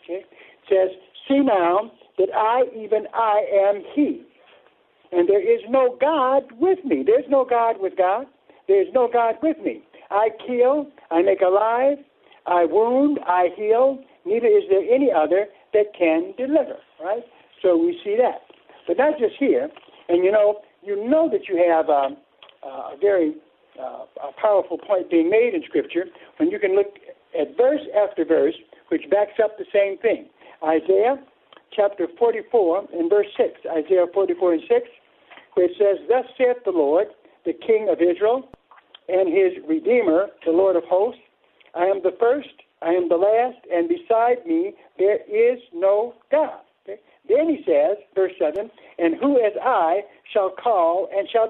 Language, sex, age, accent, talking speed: English, male, 60-79, American, 165 wpm